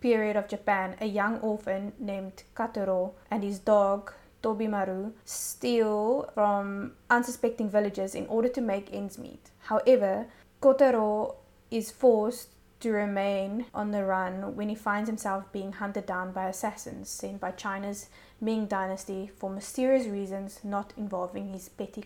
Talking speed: 140 wpm